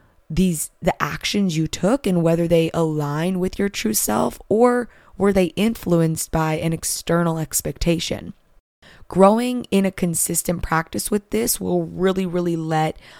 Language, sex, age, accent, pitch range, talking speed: English, female, 20-39, American, 155-200 Hz, 145 wpm